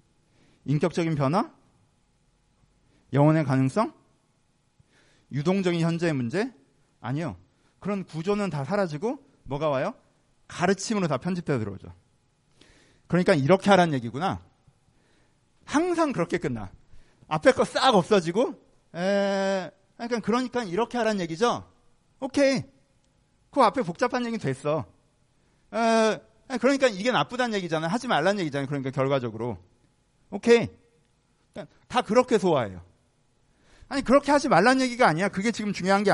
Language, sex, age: Korean, male, 40-59